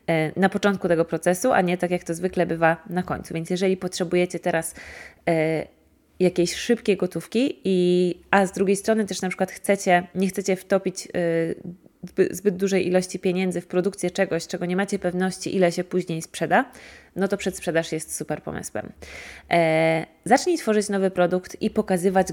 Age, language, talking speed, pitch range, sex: 20-39, Polish, 165 wpm, 170-195 Hz, female